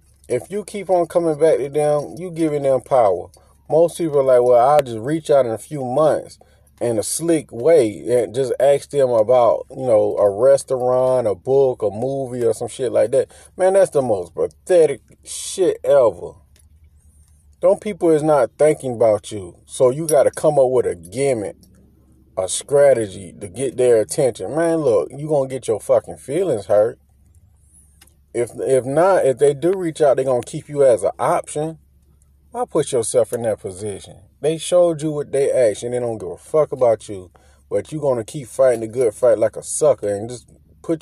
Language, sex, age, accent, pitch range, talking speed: English, male, 30-49, American, 100-165 Hz, 200 wpm